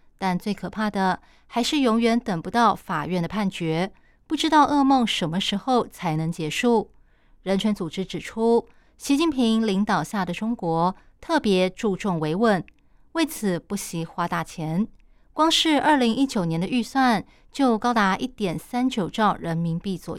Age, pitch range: 20-39, 180-245 Hz